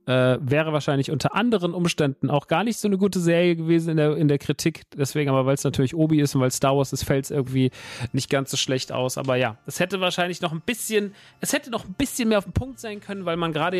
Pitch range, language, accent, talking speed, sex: 135-165 Hz, German, German, 265 wpm, male